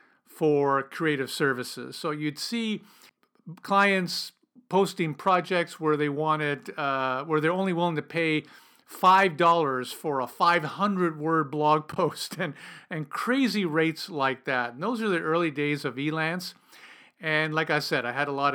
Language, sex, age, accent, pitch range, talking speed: English, male, 50-69, American, 145-190 Hz, 155 wpm